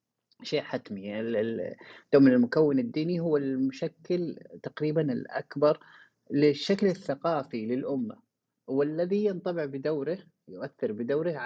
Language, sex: Arabic, male